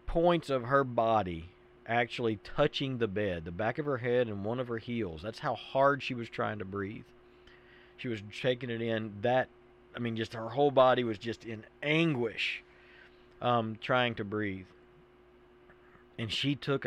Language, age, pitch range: English, 40-59, 110-135 Hz